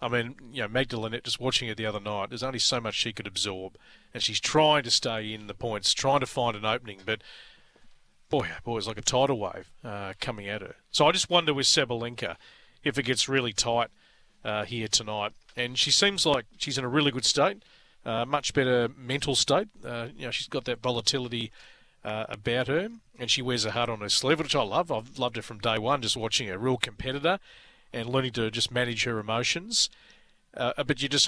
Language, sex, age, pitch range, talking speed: English, male, 40-59, 115-140 Hz, 220 wpm